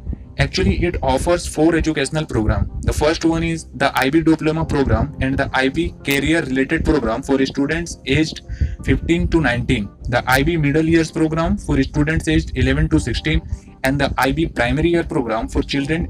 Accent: native